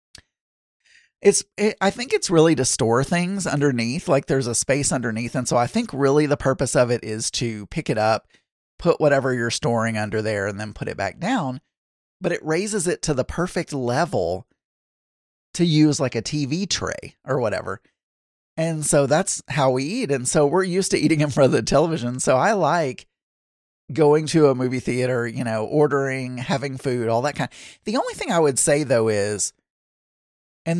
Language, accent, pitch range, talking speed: English, American, 120-160 Hz, 190 wpm